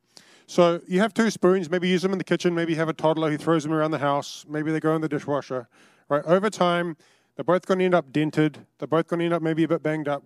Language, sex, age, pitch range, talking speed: English, male, 20-39, 135-165 Hz, 285 wpm